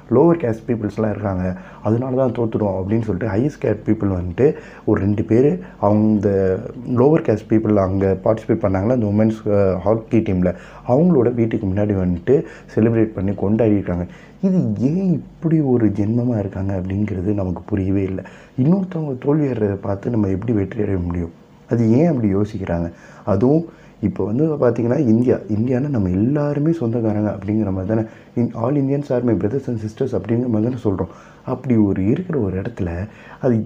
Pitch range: 100-130 Hz